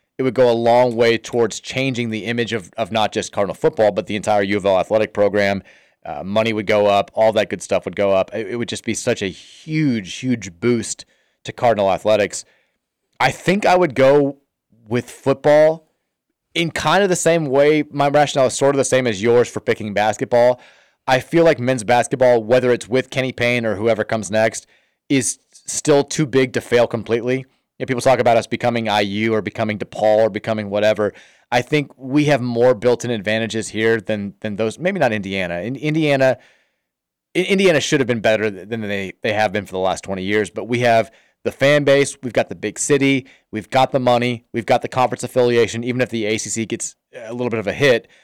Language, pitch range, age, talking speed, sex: English, 110-135 Hz, 30-49, 210 wpm, male